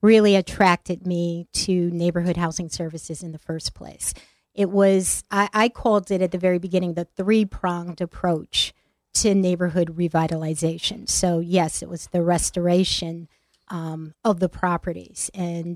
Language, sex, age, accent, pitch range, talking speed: English, female, 30-49, American, 175-195 Hz, 145 wpm